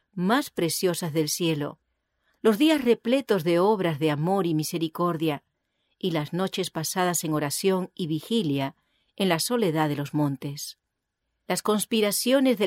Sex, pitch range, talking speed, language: female, 165-215 Hz, 140 wpm, English